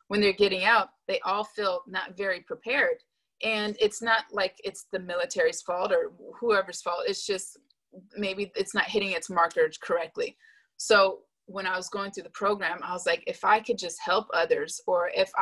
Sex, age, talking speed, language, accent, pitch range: female, 20-39, 190 wpm, English, American, 185-245 Hz